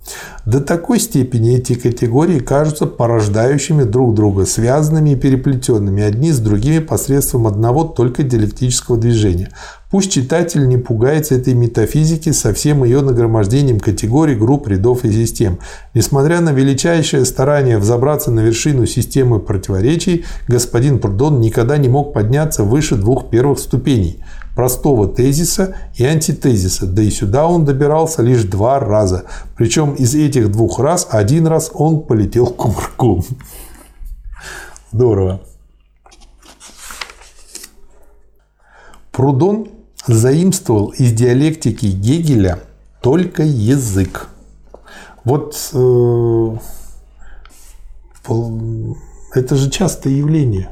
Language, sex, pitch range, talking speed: Russian, male, 110-145 Hz, 105 wpm